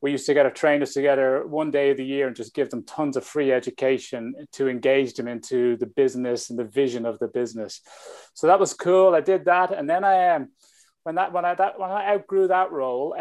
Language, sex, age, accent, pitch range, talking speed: English, male, 30-49, British, 130-160 Hz, 240 wpm